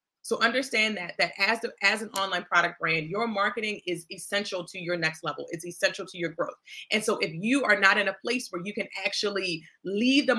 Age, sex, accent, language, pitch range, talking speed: 30-49, female, American, English, 180-215 Hz, 225 wpm